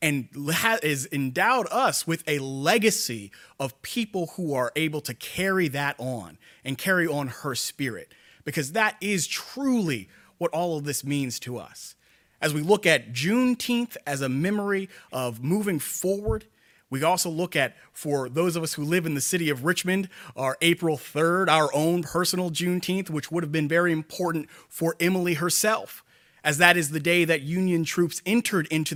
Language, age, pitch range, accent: English, 30-49, 130-175 Hz, American